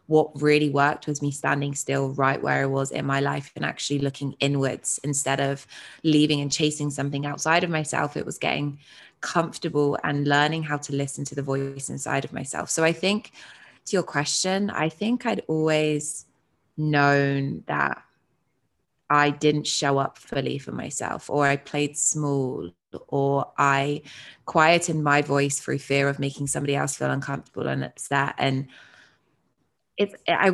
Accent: British